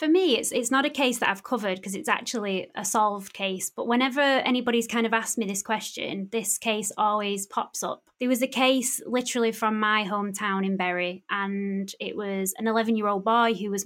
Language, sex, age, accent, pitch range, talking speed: English, female, 20-39, British, 195-235 Hz, 210 wpm